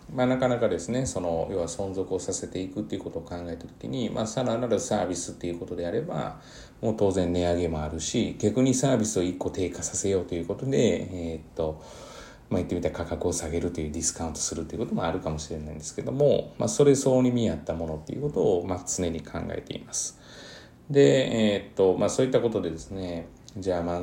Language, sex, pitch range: Japanese, male, 85-105 Hz